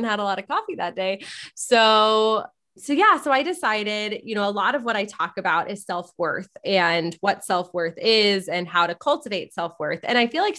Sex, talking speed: female, 210 wpm